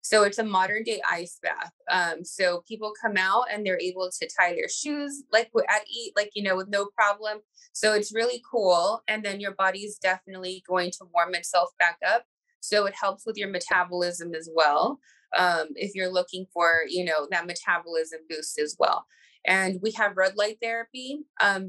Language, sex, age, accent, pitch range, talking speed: English, female, 20-39, American, 180-220 Hz, 195 wpm